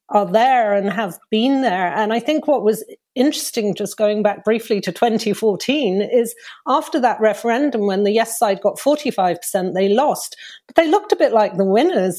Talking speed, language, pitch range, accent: 185 wpm, German, 205-255 Hz, British